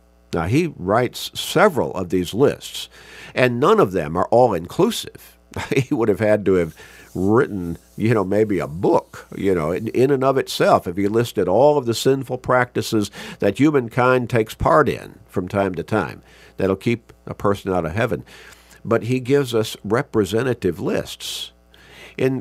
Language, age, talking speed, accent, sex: English, 50-69, 170 wpm, American, male